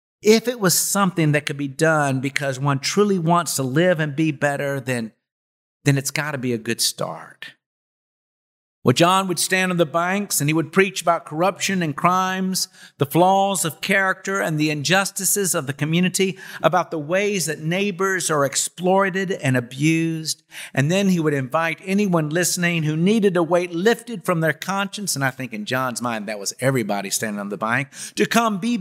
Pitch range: 130-185 Hz